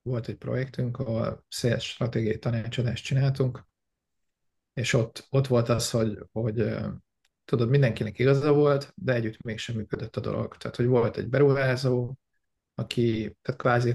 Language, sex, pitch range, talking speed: Hungarian, male, 110-130 Hz, 140 wpm